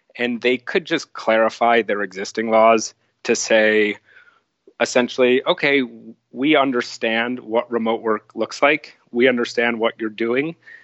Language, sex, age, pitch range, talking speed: English, male, 30-49, 110-125 Hz, 135 wpm